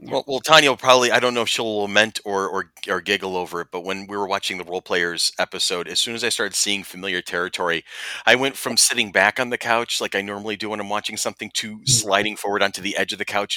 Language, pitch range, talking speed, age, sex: English, 95-120 Hz, 260 wpm, 30-49, male